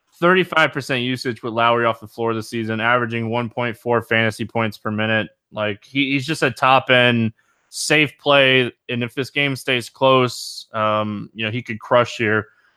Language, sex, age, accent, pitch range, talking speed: English, male, 20-39, American, 115-140 Hz, 170 wpm